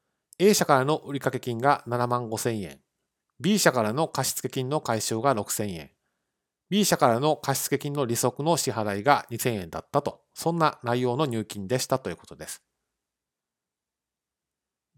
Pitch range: 110-155 Hz